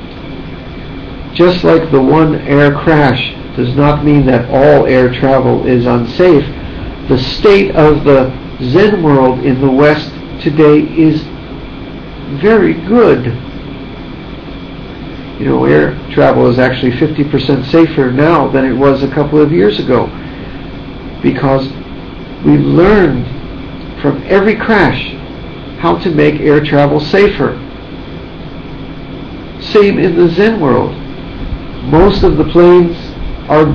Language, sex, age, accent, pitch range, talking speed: English, male, 50-69, American, 135-165 Hz, 120 wpm